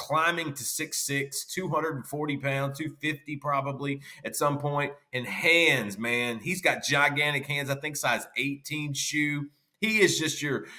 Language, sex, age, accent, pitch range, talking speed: English, male, 30-49, American, 130-155 Hz, 150 wpm